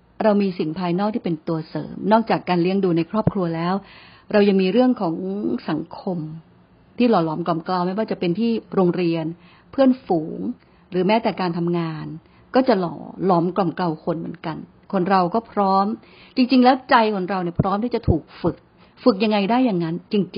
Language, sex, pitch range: Thai, female, 175-230 Hz